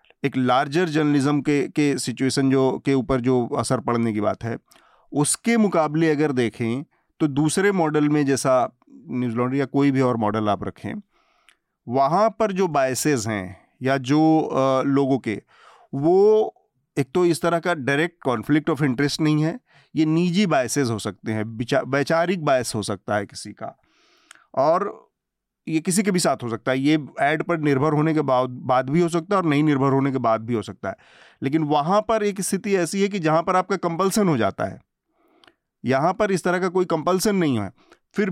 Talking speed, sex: 190 wpm, male